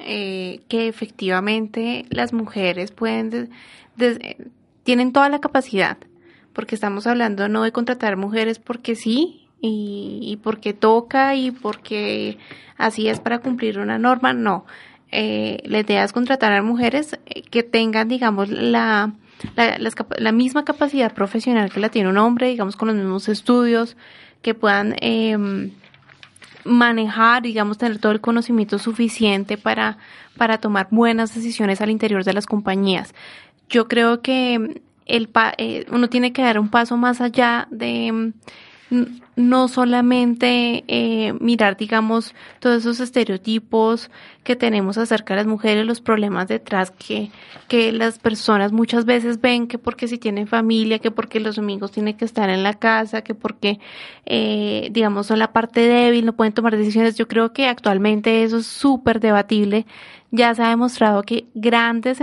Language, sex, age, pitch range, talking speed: Spanish, female, 20-39, 210-240 Hz, 155 wpm